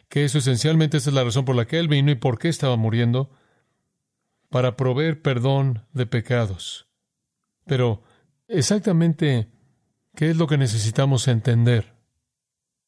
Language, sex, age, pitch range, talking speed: Spanish, male, 40-59, 120-140 Hz, 140 wpm